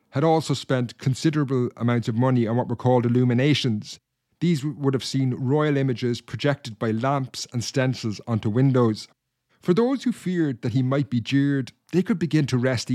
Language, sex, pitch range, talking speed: English, male, 120-145 Hz, 180 wpm